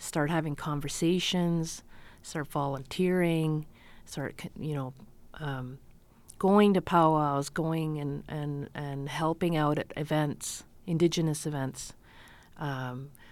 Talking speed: 105 wpm